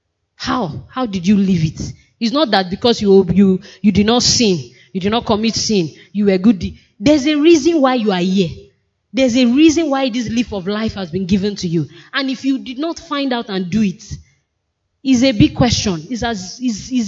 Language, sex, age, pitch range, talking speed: English, female, 20-39, 195-250 Hz, 205 wpm